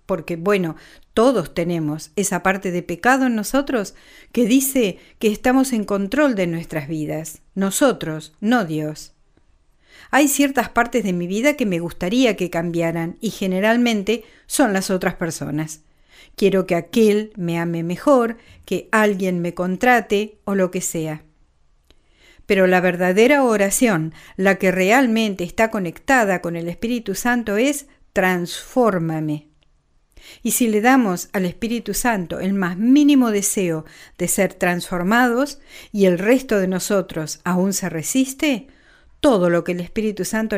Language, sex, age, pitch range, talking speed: Spanish, female, 50-69, 170-235 Hz, 140 wpm